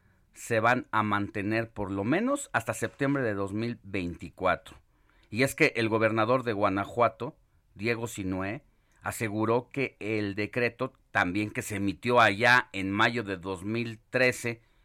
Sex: male